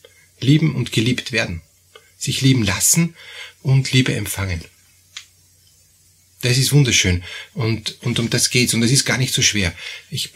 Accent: Austrian